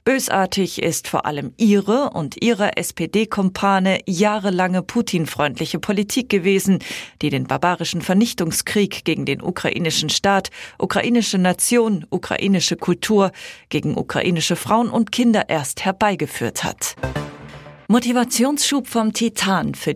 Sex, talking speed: female, 110 wpm